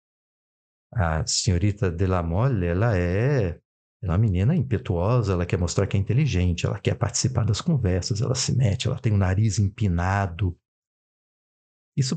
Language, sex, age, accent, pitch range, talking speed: Portuguese, male, 50-69, Brazilian, 100-135 Hz, 155 wpm